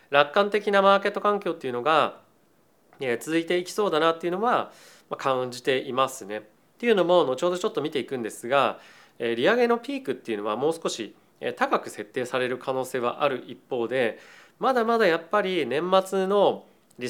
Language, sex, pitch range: Japanese, male, 120-180 Hz